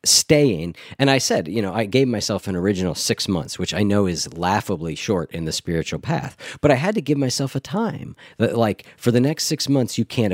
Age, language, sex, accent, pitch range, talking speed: 40-59, English, male, American, 90-135 Hz, 230 wpm